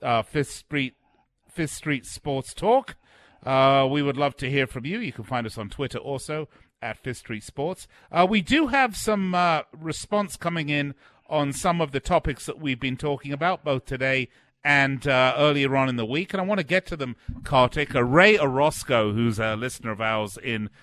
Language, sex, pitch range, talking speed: English, male, 120-145 Hz, 205 wpm